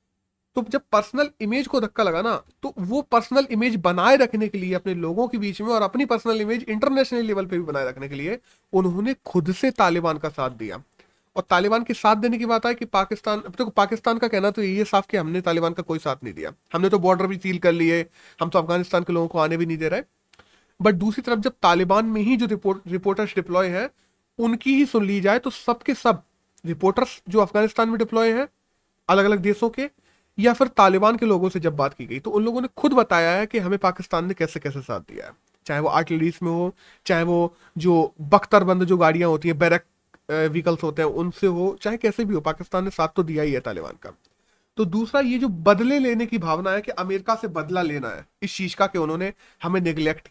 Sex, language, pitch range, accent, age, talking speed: male, Hindi, 170-230 Hz, native, 30-49, 230 wpm